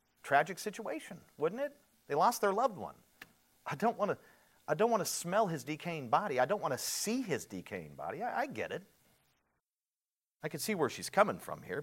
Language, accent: English, American